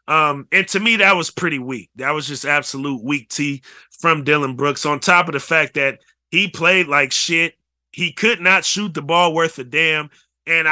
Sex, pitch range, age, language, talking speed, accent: male, 140-180 Hz, 30-49, English, 205 wpm, American